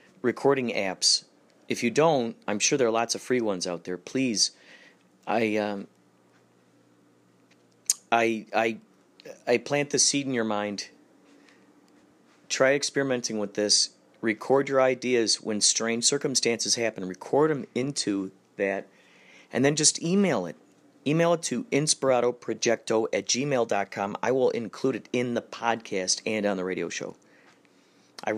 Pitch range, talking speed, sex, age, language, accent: 100-130 Hz, 140 wpm, male, 40-59, English, American